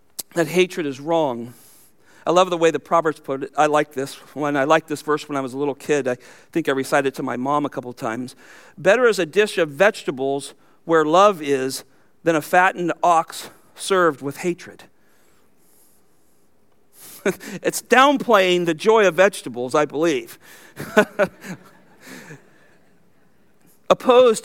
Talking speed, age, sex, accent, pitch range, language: 155 wpm, 50-69, male, American, 145-195 Hz, English